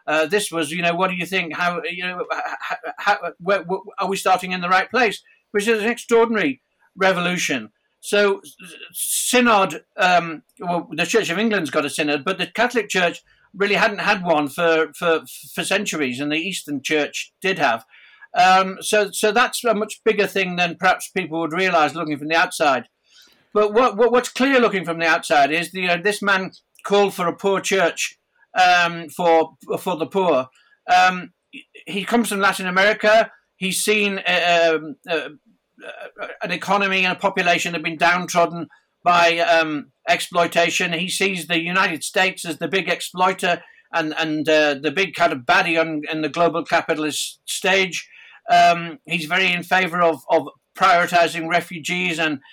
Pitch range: 165-195 Hz